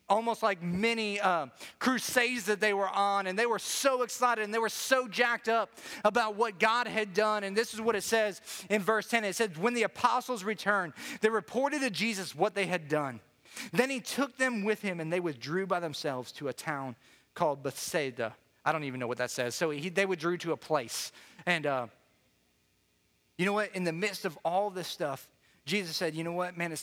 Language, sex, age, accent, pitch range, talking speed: English, male, 30-49, American, 155-210 Hz, 215 wpm